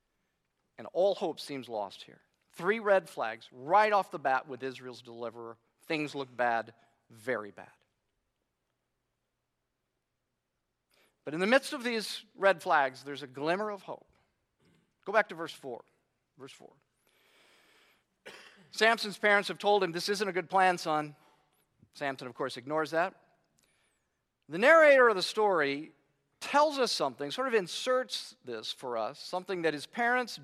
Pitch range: 135-205 Hz